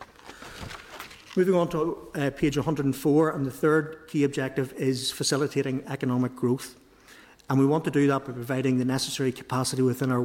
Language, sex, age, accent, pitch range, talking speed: English, male, 50-69, Irish, 130-150 Hz, 165 wpm